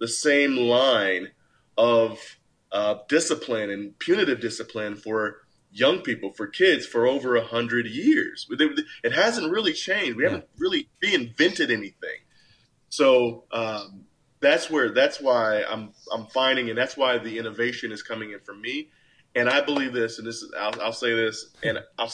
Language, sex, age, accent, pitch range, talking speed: English, male, 30-49, American, 110-135 Hz, 165 wpm